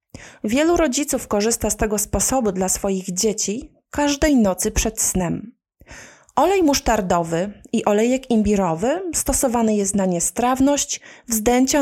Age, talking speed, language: 30-49, 115 wpm, Polish